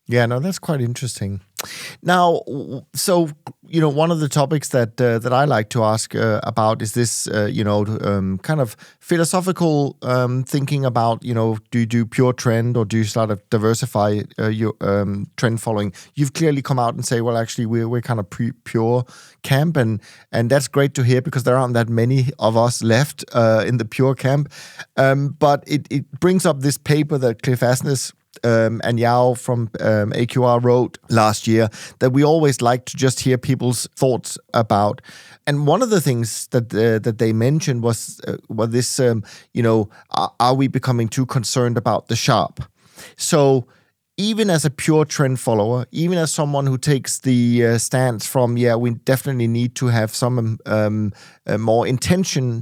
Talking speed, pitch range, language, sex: 195 wpm, 115-140 Hz, English, male